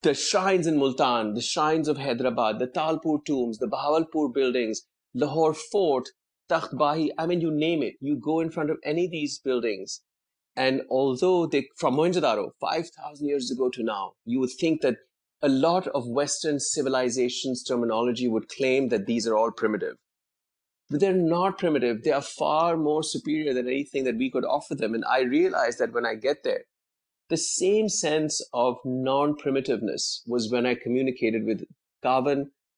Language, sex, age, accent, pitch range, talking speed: English, male, 30-49, Indian, 125-160 Hz, 170 wpm